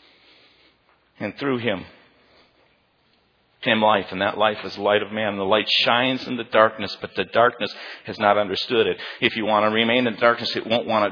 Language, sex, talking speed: English, male, 205 wpm